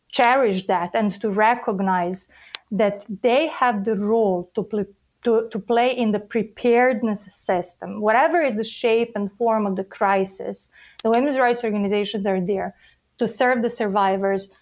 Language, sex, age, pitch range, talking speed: English, female, 30-49, 205-245 Hz, 155 wpm